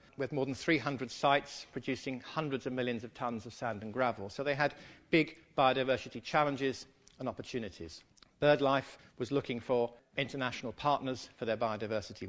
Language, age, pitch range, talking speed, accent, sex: English, 50-69, 120-150 Hz, 155 wpm, British, male